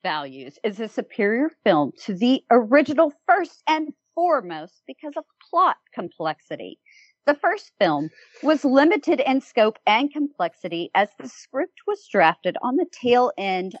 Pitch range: 195-285 Hz